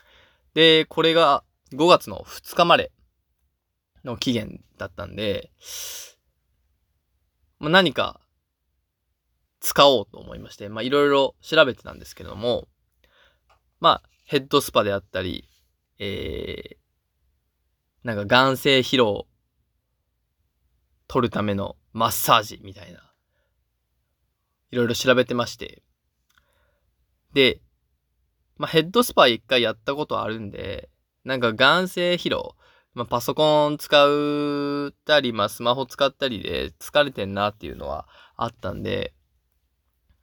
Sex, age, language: male, 20-39, Japanese